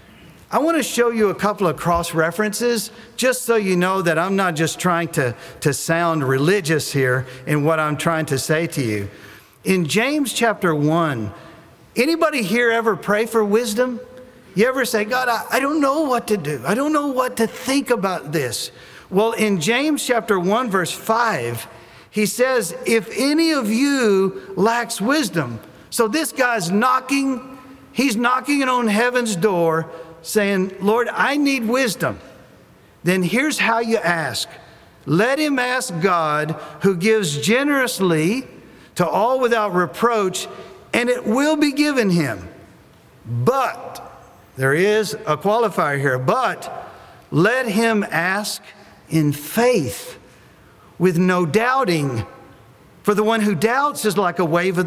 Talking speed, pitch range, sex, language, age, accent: 150 wpm, 170-245 Hz, male, English, 50-69, American